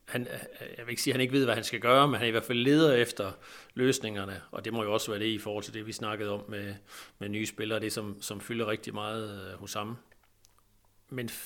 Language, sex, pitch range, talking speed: Danish, male, 110-130 Hz, 250 wpm